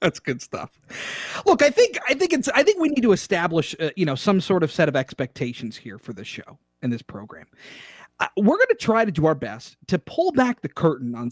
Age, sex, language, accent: 30-49, male, English, American